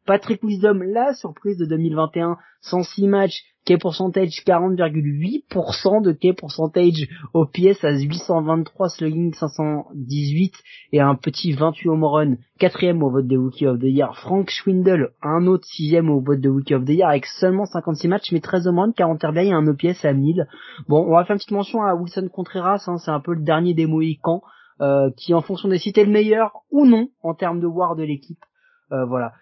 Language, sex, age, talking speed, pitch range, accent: French, male, 20-39, 195 wpm, 160-200 Hz, French